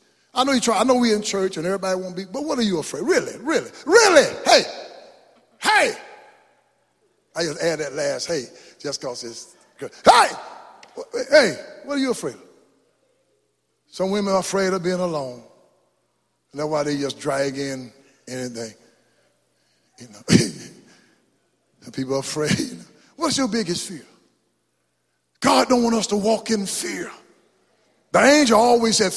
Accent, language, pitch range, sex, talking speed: American, English, 190-295 Hz, male, 155 wpm